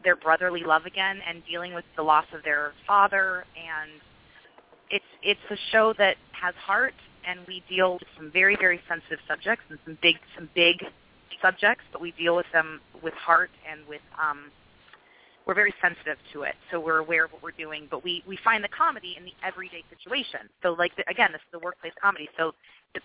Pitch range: 155-185 Hz